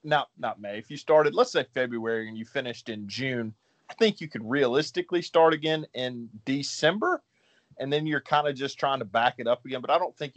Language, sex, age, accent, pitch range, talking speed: English, male, 30-49, American, 115-155 Hz, 225 wpm